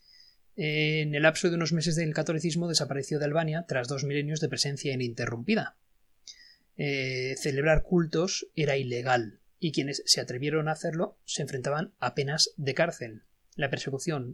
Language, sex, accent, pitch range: Spanish, male, Spanish, 135-165 Hz